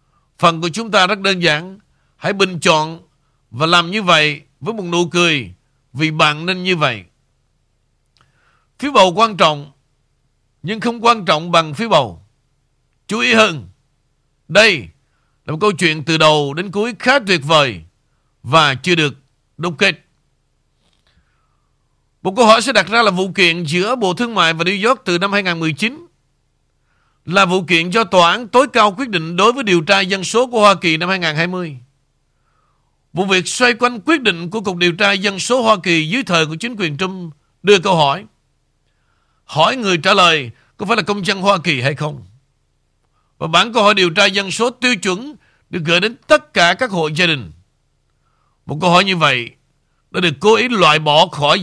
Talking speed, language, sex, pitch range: 185 wpm, Vietnamese, male, 145-205 Hz